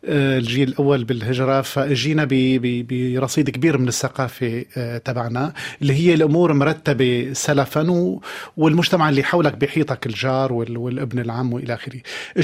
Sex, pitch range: male, 130-155 Hz